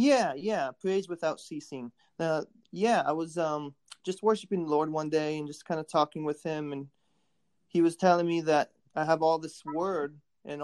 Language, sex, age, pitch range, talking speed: English, male, 20-39, 145-160 Hz, 195 wpm